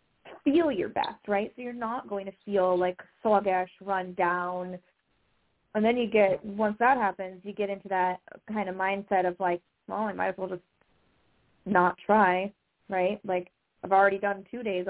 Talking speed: 180 wpm